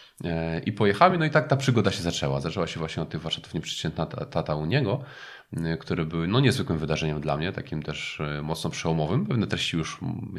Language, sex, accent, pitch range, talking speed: Polish, male, native, 75-100 Hz, 195 wpm